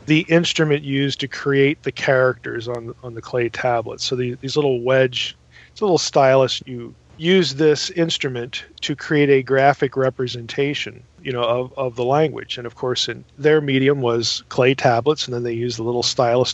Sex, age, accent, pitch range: male, 40-59, American, 120-145 Hz